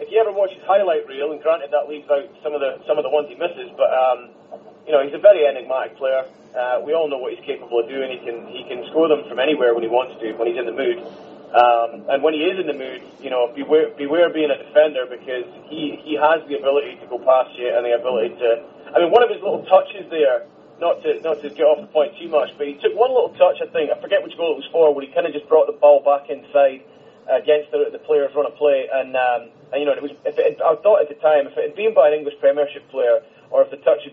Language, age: English, 30-49